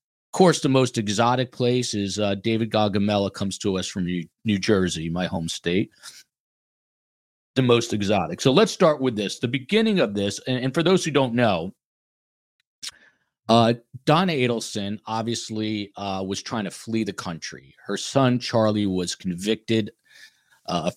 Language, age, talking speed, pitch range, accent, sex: English, 40-59, 165 wpm, 95-115 Hz, American, male